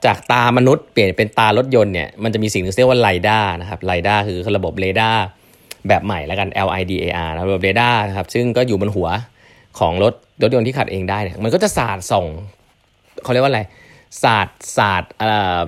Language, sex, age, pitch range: Thai, male, 20-39, 95-125 Hz